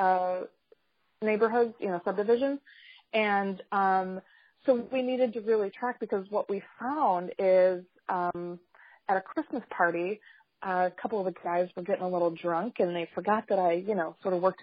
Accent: American